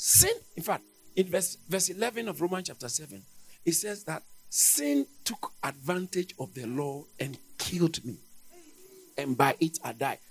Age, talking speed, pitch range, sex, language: 50-69, 165 wpm, 180-300 Hz, male, English